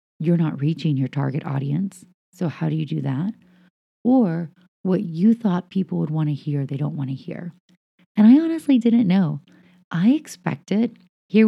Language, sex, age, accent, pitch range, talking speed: English, female, 30-49, American, 155-185 Hz, 180 wpm